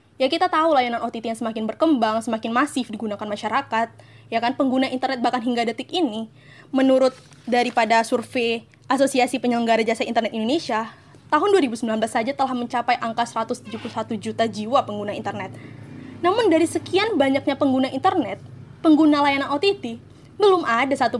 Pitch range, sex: 225-285 Hz, female